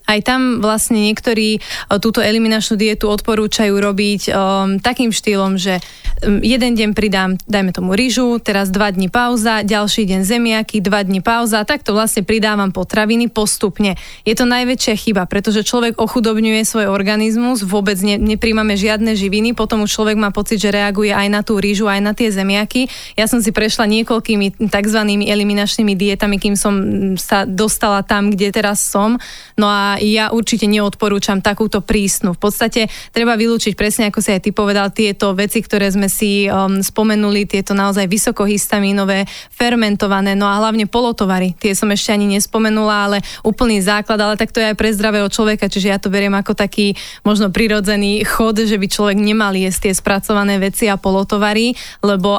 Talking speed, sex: 165 wpm, female